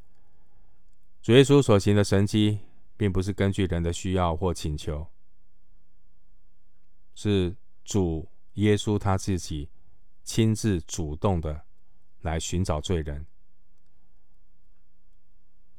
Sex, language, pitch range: male, Chinese, 90-100 Hz